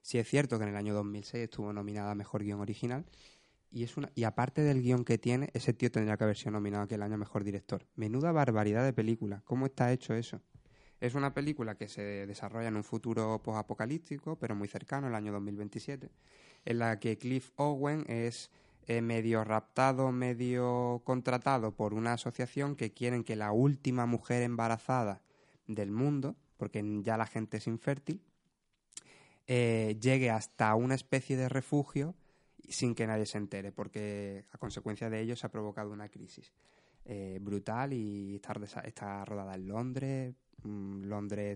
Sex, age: male, 20-39